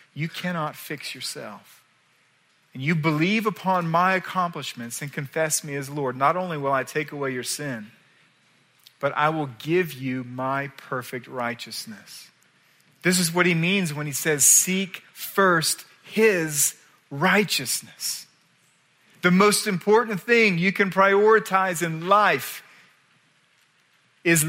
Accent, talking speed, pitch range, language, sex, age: American, 130 wpm, 130-180 Hz, English, male, 40-59